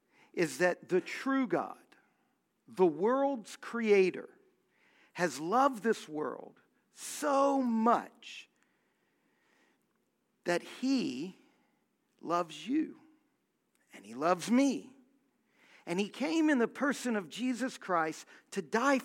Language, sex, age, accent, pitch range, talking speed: English, male, 50-69, American, 180-275 Hz, 105 wpm